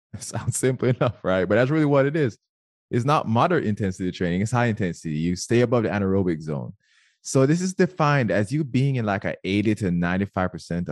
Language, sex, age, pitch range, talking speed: English, male, 20-39, 90-125 Hz, 205 wpm